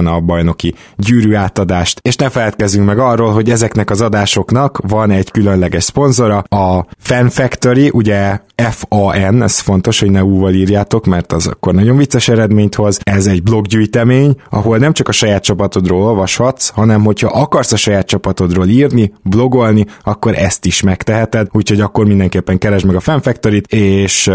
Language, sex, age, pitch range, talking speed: Hungarian, male, 20-39, 100-115 Hz, 165 wpm